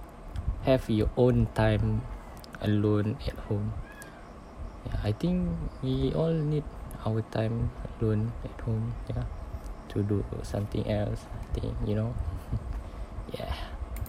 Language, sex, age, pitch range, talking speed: English, male, 20-39, 80-110 Hz, 120 wpm